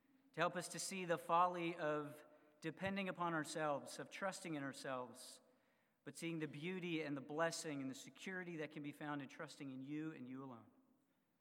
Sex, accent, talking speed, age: male, American, 190 wpm, 40-59